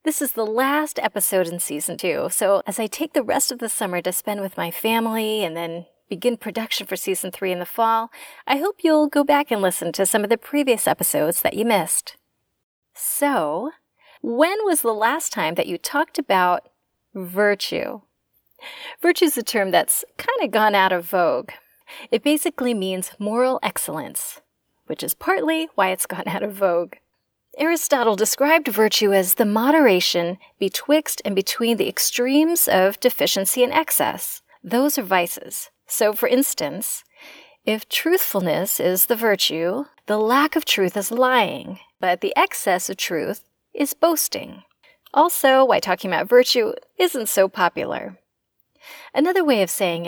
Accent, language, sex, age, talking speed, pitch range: American, English, female, 30-49, 160 wpm, 195-300 Hz